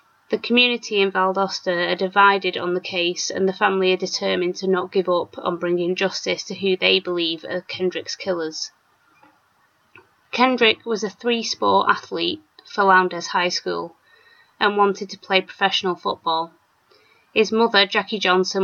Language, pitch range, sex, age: English, 175-200 Hz, female, 20-39